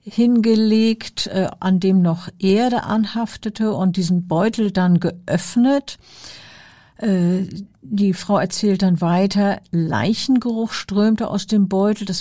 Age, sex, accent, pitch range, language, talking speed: 50-69, female, German, 185-215 Hz, German, 110 wpm